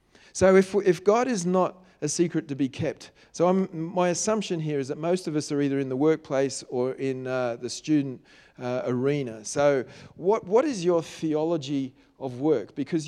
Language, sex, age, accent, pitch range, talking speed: English, male, 40-59, Australian, 145-180 Hz, 195 wpm